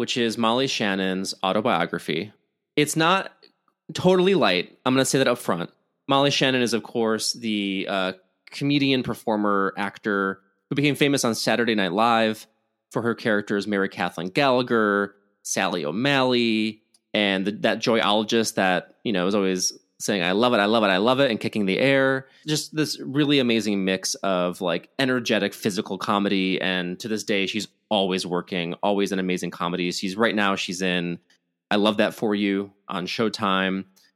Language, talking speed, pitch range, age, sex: English, 165 wpm, 95-120 Hz, 20-39, male